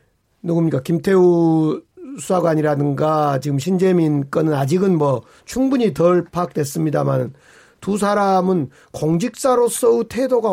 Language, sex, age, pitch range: Korean, male, 40-59, 140-200 Hz